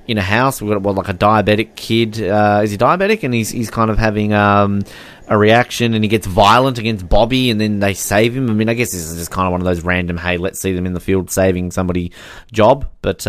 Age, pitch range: 20-39, 100-135 Hz